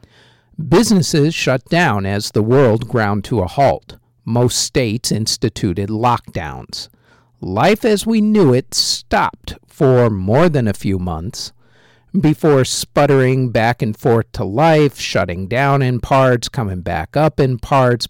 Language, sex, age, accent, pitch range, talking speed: English, male, 50-69, American, 115-145 Hz, 140 wpm